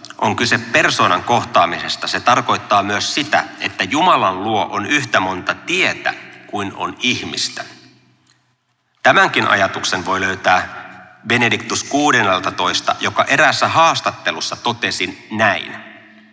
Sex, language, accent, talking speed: male, Finnish, native, 105 wpm